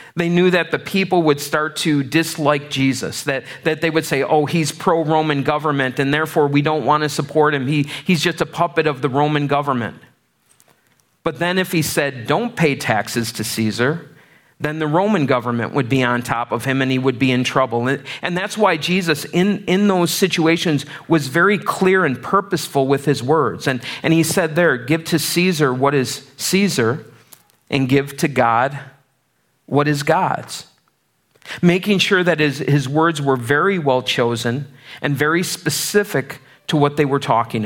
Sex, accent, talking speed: male, American, 180 wpm